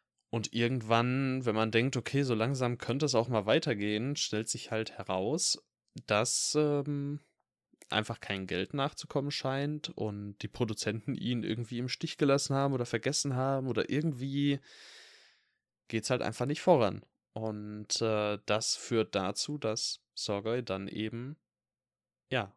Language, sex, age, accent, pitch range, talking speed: German, male, 10-29, German, 110-135 Hz, 145 wpm